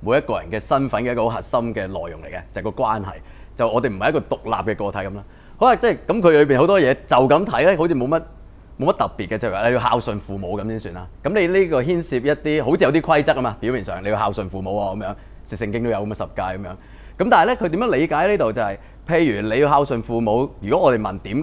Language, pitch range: Chinese, 100-140 Hz